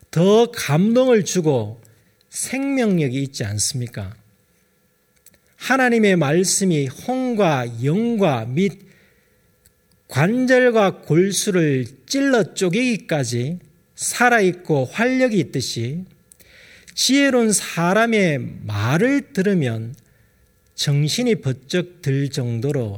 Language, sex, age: Korean, male, 40-59